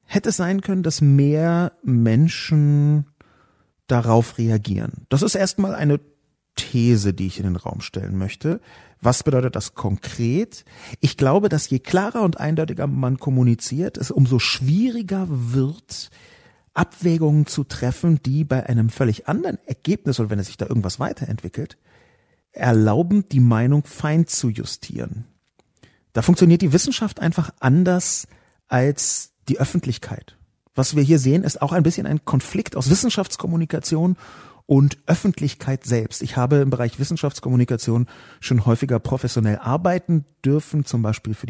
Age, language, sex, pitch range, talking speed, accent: 40-59, German, male, 110-155 Hz, 140 wpm, German